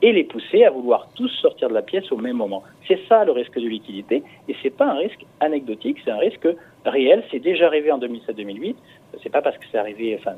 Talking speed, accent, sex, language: 250 wpm, French, male, French